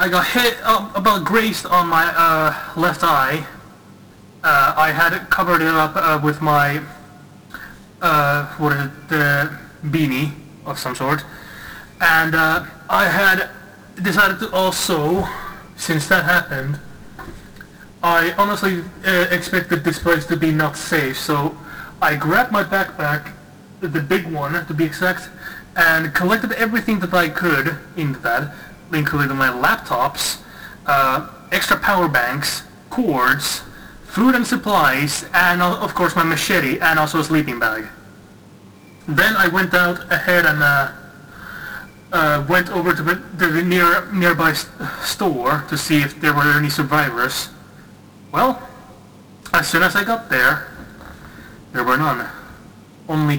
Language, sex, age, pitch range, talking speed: English, male, 20-39, 150-180 Hz, 135 wpm